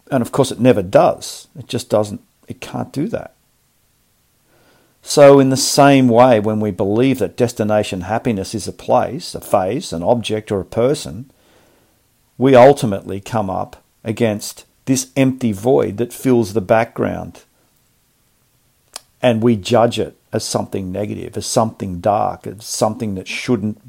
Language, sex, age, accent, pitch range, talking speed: English, male, 50-69, Australian, 105-125 Hz, 150 wpm